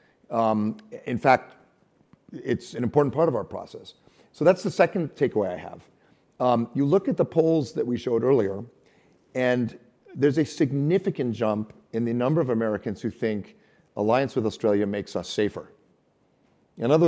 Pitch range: 100-135 Hz